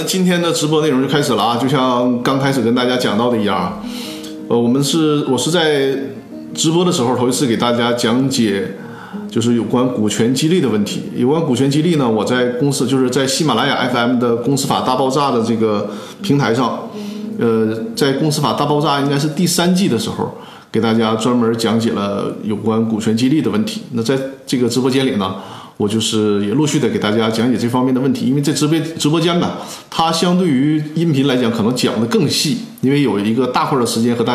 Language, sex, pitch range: Chinese, male, 115-150 Hz